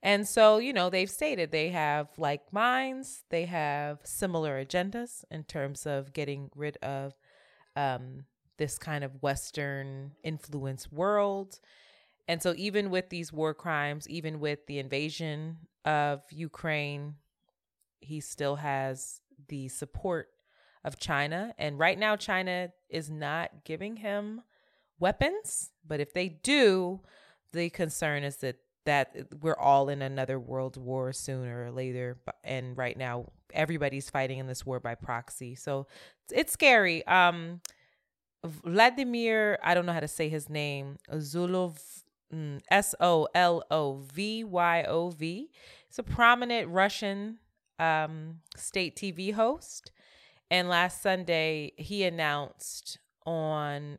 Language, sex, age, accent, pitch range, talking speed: English, female, 20-39, American, 140-180 Hz, 125 wpm